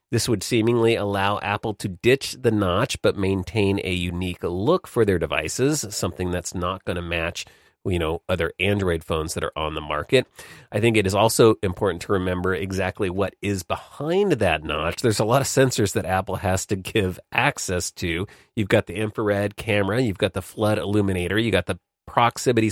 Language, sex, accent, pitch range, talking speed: English, male, American, 90-115 Hz, 195 wpm